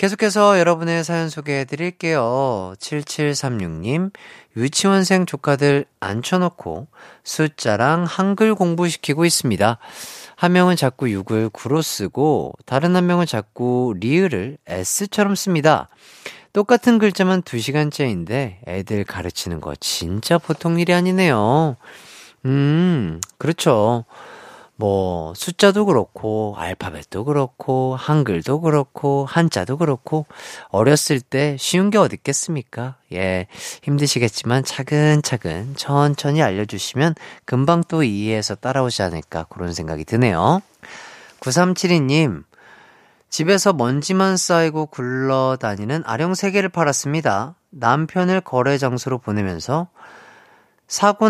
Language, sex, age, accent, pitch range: Korean, male, 40-59, native, 115-175 Hz